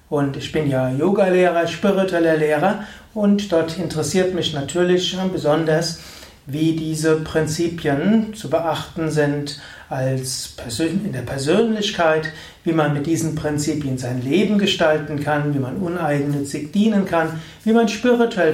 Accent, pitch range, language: German, 145-180 Hz, German